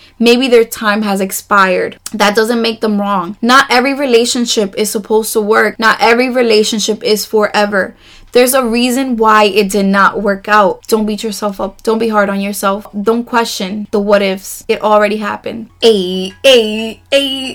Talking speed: 170 wpm